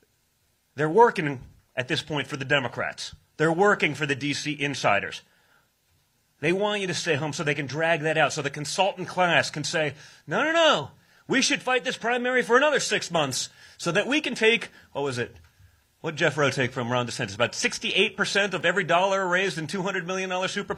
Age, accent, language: 30-49, American, English